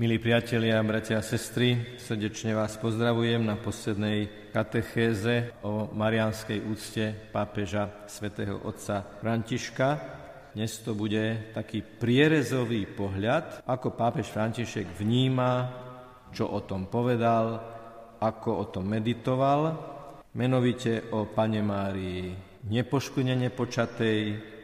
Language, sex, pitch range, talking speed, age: Slovak, male, 110-125 Hz, 100 wpm, 50-69